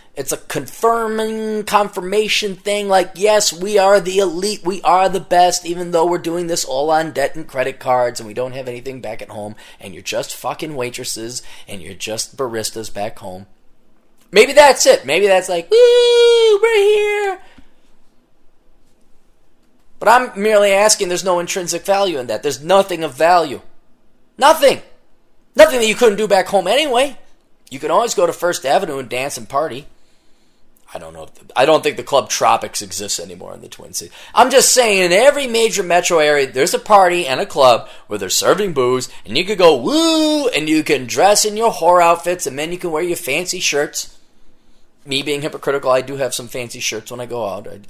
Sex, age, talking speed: male, 30-49, 200 wpm